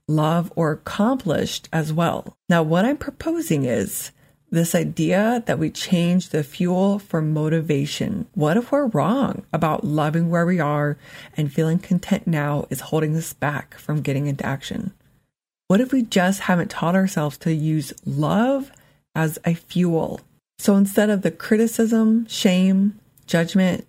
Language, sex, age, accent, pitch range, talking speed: English, female, 30-49, American, 155-210 Hz, 150 wpm